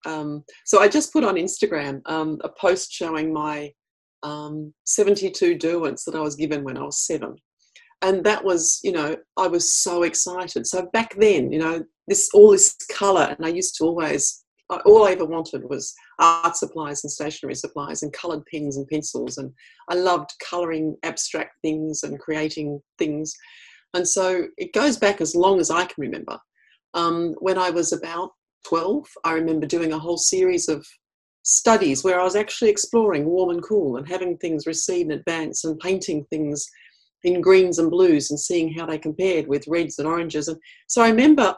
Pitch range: 155-190 Hz